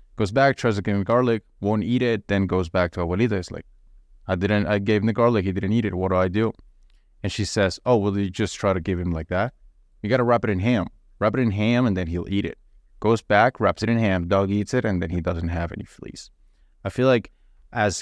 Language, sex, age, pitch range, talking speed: English, male, 20-39, 95-115 Hz, 270 wpm